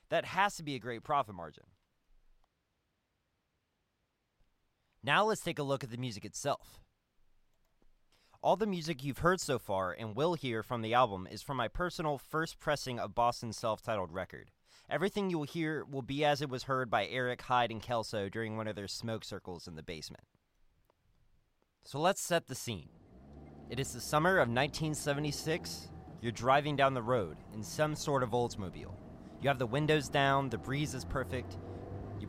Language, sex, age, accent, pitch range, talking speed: English, male, 30-49, American, 105-145 Hz, 175 wpm